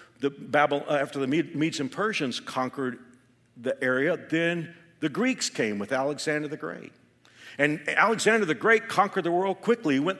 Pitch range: 150-215 Hz